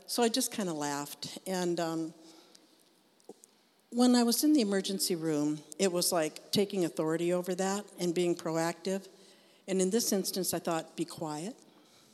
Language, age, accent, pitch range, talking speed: English, 60-79, American, 160-195 Hz, 165 wpm